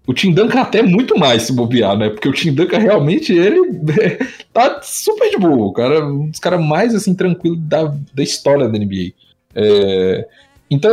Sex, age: male, 20-39